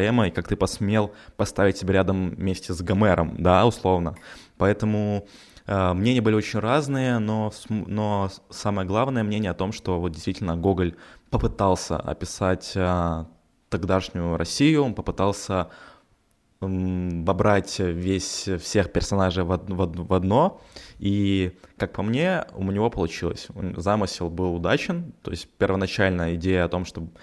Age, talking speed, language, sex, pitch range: 20-39, 140 wpm, Ukrainian, male, 90-105 Hz